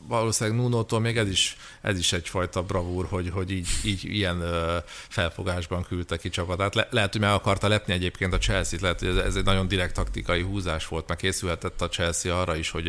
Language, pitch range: Hungarian, 85-105 Hz